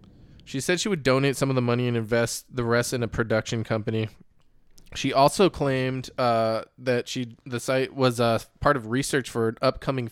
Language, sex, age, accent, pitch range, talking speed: English, male, 20-39, American, 110-130 Hz, 195 wpm